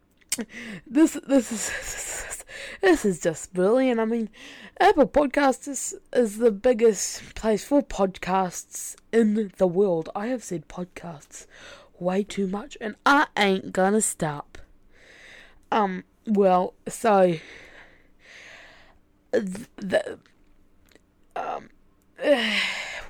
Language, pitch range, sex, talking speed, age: English, 180-230 Hz, female, 105 wpm, 10-29